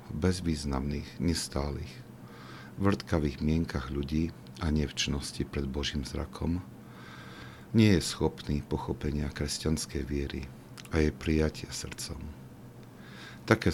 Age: 50-69